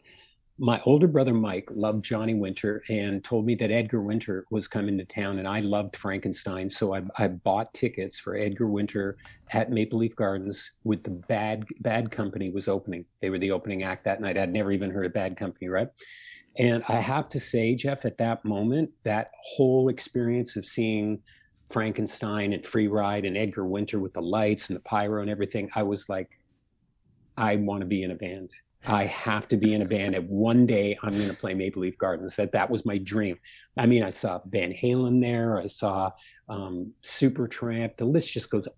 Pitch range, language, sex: 100-120 Hz, English, male